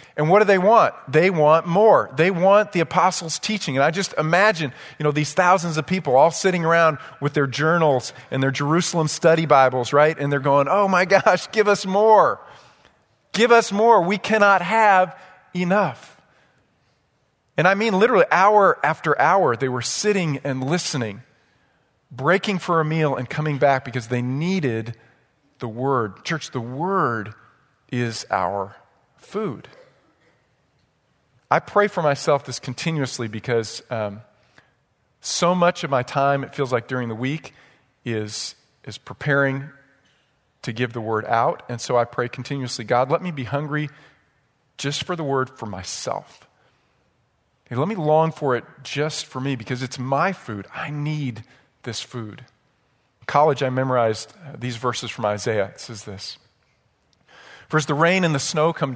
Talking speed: 165 wpm